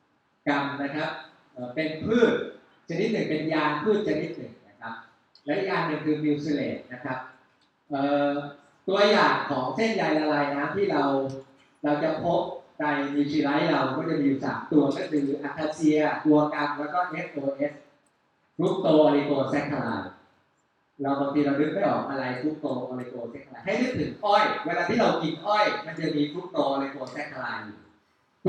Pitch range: 145-200 Hz